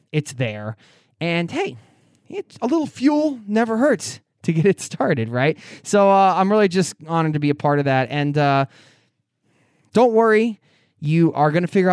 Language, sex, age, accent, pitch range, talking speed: English, male, 20-39, American, 135-175 Hz, 175 wpm